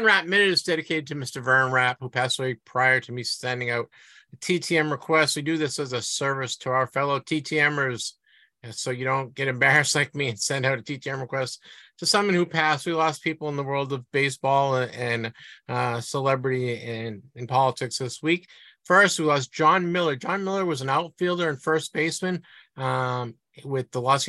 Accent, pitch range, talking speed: American, 135-175 Hz, 195 wpm